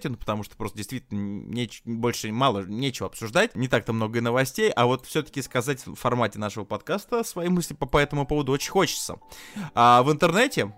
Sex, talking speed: male, 180 wpm